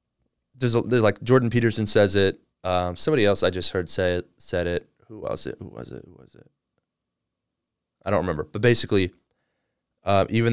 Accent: American